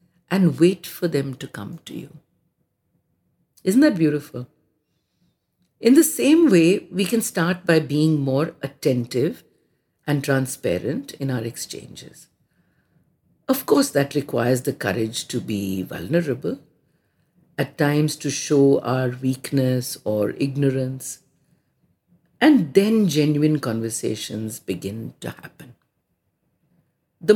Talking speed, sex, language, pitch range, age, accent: 115 wpm, female, English, 135-190 Hz, 50-69, Indian